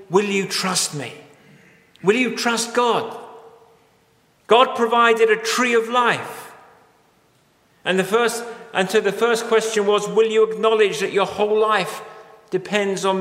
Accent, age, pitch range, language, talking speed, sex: British, 40-59, 165-225 Hz, English, 130 wpm, male